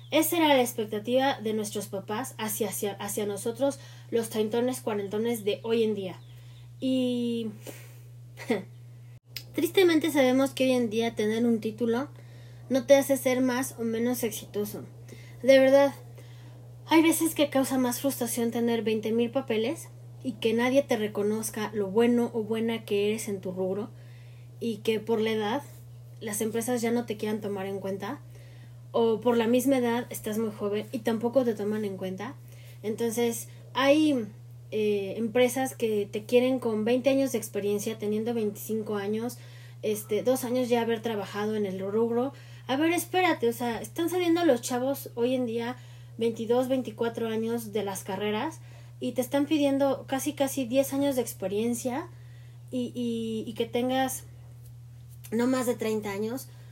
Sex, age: female, 20-39